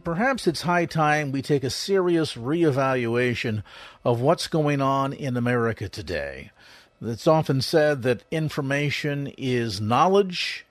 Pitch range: 130-175 Hz